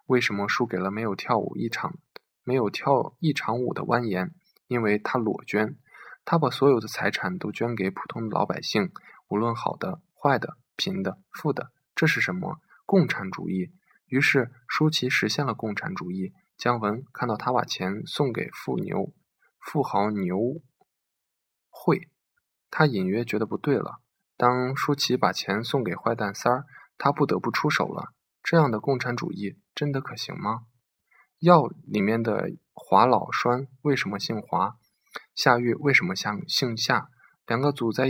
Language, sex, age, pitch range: Chinese, male, 20-39, 105-135 Hz